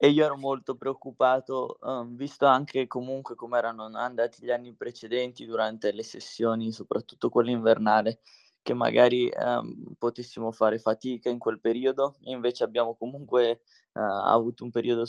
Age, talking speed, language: 20-39, 150 wpm, Italian